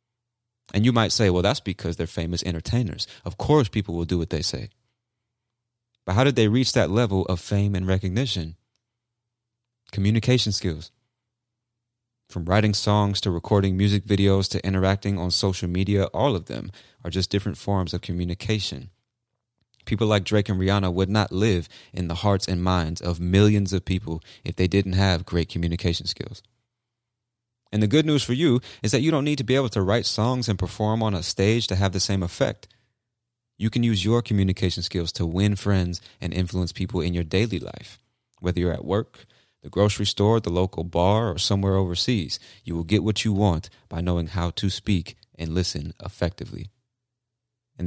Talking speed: 185 wpm